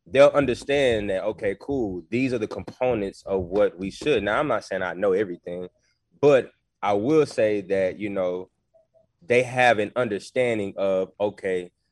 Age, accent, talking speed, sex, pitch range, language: 20-39, American, 165 wpm, male, 95-120 Hz, English